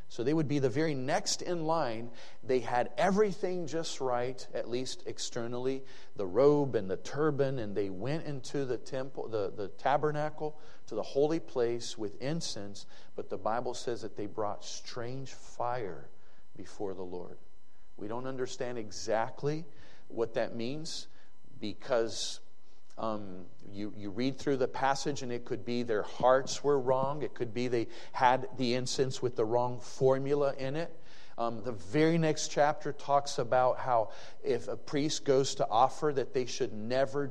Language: English